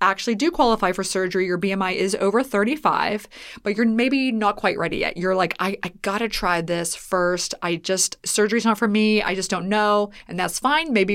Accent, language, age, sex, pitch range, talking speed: American, English, 20-39, female, 185-230 Hz, 215 wpm